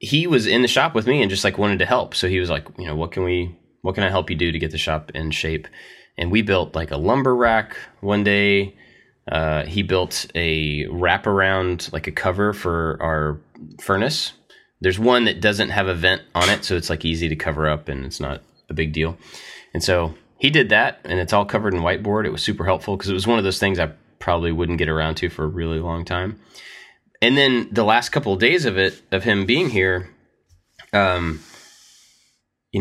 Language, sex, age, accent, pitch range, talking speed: English, male, 20-39, American, 80-105 Hz, 225 wpm